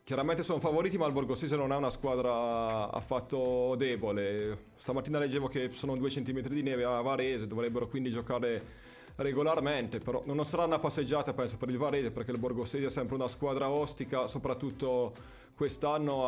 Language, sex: Italian, male